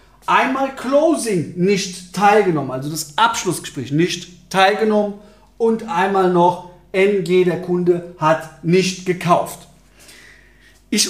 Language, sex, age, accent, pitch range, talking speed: German, male, 40-59, German, 155-230 Hz, 105 wpm